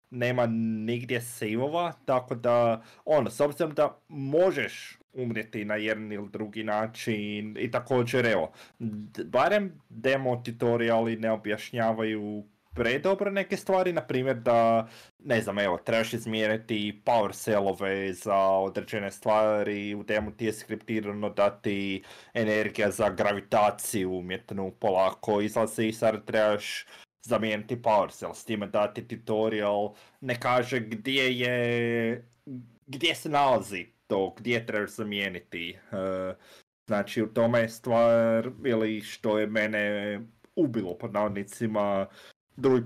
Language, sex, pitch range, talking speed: Croatian, male, 105-120 Hz, 120 wpm